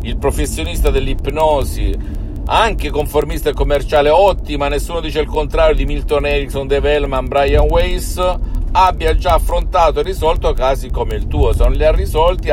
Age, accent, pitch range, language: 50-69, native, 105-145 Hz, Italian